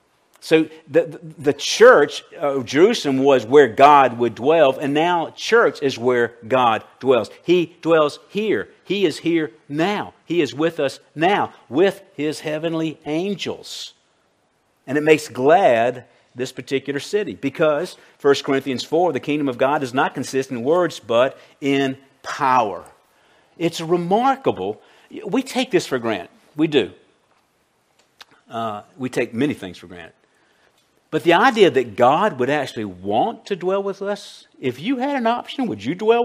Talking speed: 155 wpm